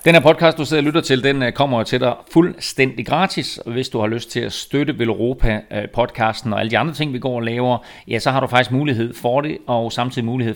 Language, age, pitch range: Danish, 30-49, 110-130 Hz